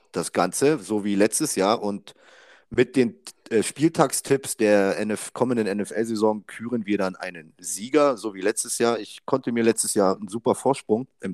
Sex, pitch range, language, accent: male, 100-140 Hz, German, German